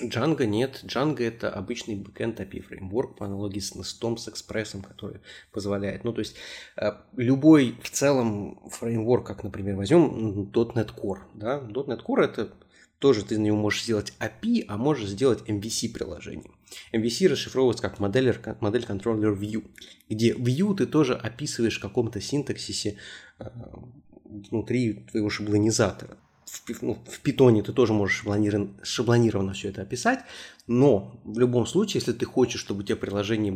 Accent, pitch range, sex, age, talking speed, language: native, 100-120 Hz, male, 20-39, 145 wpm, Russian